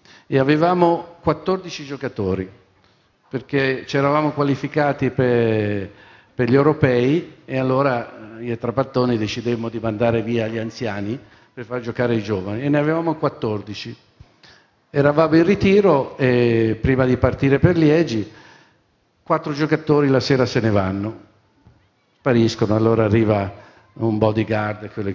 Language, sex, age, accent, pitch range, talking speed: Italian, male, 50-69, native, 110-135 Hz, 125 wpm